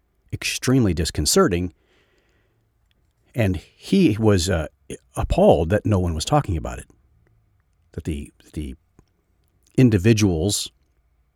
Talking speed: 95 wpm